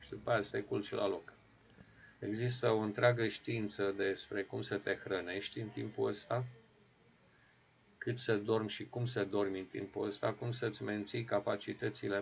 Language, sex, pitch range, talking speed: Romanian, male, 100-115 Hz, 160 wpm